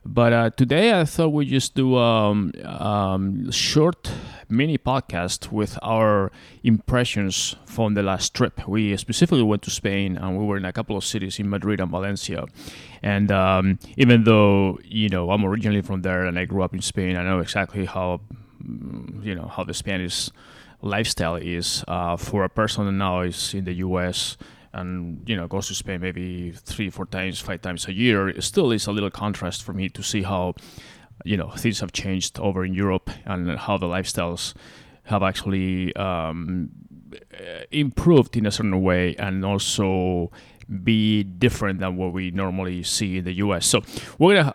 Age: 20-39